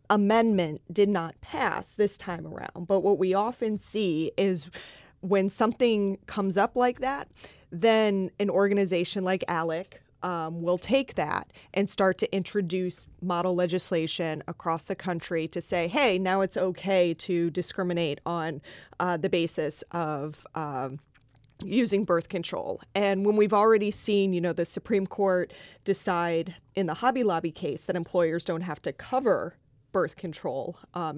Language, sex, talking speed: English, female, 150 wpm